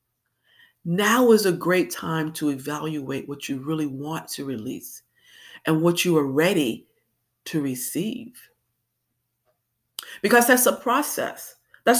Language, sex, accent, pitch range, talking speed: English, female, American, 150-240 Hz, 125 wpm